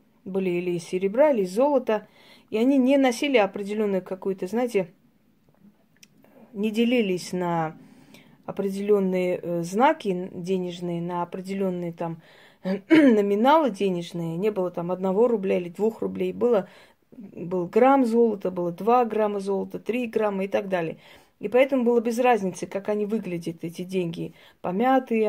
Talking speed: 140 wpm